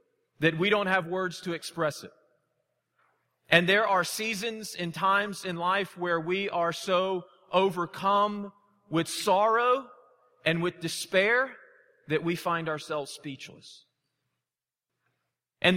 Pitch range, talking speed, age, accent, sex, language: 155-200 Hz, 120 wpm, 40-59, American, male, English